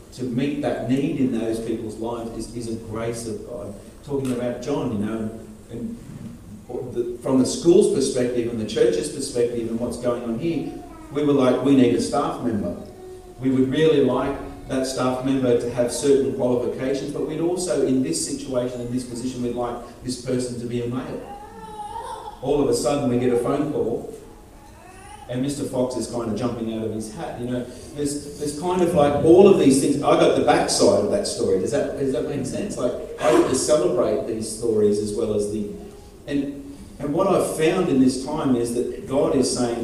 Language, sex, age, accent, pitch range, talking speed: English, male, 40-59, Australian, 115-140 Hz, 205 wpm